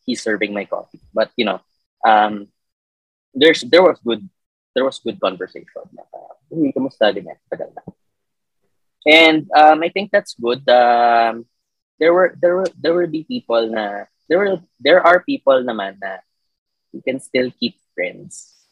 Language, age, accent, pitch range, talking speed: Filipino, 20-39, native, 100-130 Hz, 150 wpm